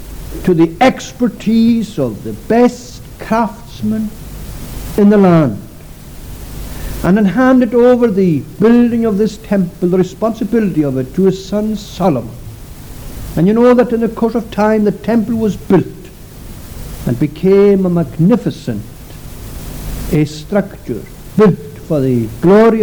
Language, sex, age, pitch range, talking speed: English, male, 60-79, 125-195 Hz, 130 wpm